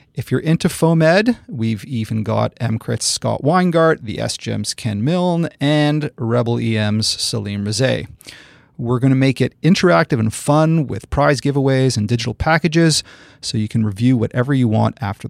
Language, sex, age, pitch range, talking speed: English, male, 40-59, 120-165 Hz, 160 wpm